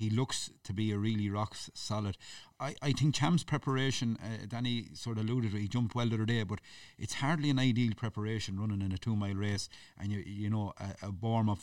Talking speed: 215 wpm